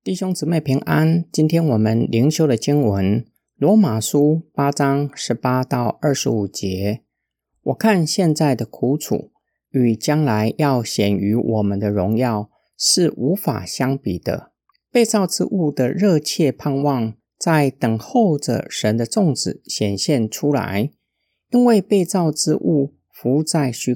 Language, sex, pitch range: Chinese, male, 115-165 Hz